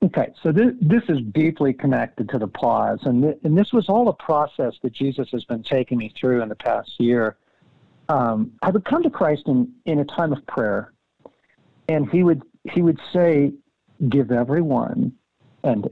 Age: 50-69